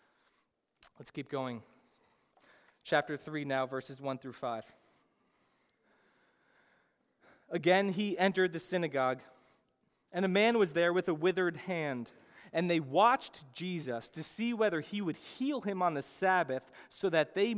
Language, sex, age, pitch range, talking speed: English, male, 20-39, 135-190 Hz, 140 wpm